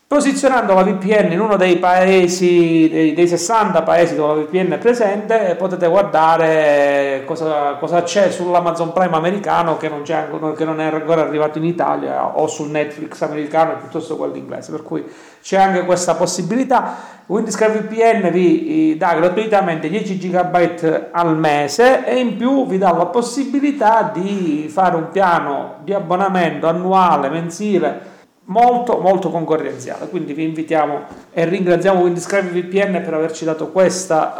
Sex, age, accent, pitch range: male, 40-59, native, 160-195 Hz